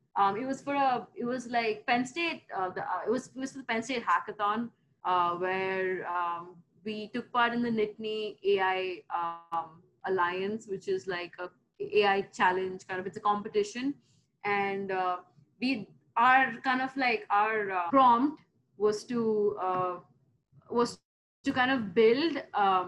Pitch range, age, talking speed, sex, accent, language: 195-240 Hz, 20-39, 165 wpm, female, native, Telugu